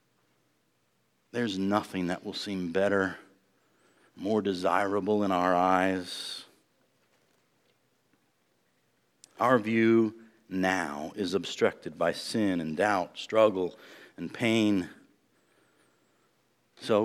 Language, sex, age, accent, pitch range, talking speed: English, male, 50-69, American, 105-135 Hz, 85 wpm